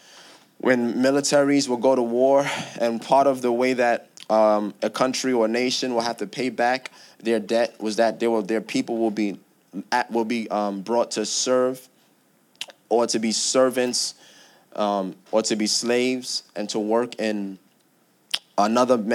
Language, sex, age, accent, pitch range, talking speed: English, male, 20-39, American, 115-140 Hz, 165 wpm